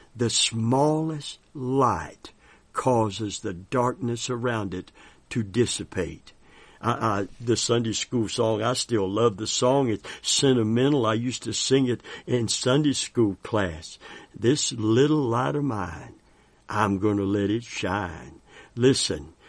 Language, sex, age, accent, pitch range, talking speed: English, male, 60-79, American, 110-135 Hz, 130 wpm